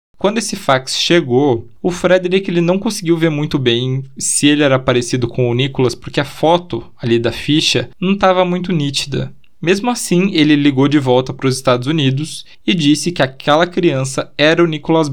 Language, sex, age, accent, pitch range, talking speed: Portuguese, male, 20-39, Brazilian, 125-160 Hz, 180 wpm